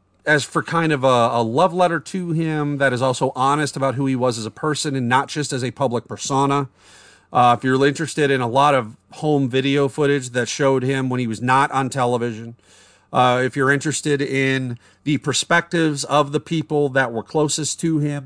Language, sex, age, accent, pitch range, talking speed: English, male, 40-59, American, 120-150 Hz, 205 wpm